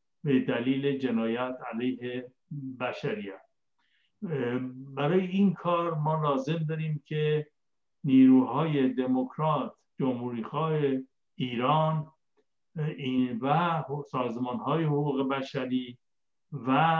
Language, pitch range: Persian, 125-155 Hz